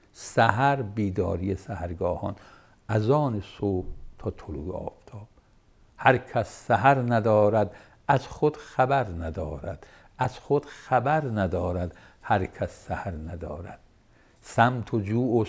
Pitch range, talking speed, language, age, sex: 90-120 Hz, 110 wpm, Persian, 60-79, male